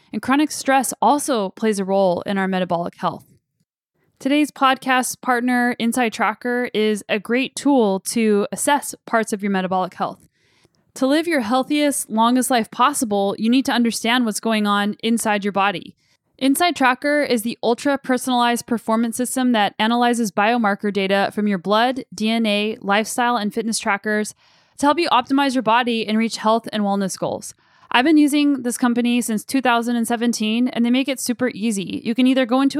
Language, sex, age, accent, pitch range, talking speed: English, female, 10-29, American, 205-250 Hz, 170 wpm